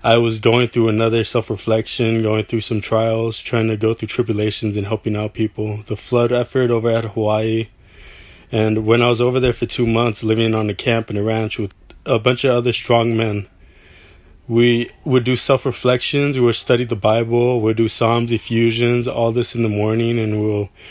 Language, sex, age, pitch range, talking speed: English, male, 20-39, 105-120 Hz, 200 wpm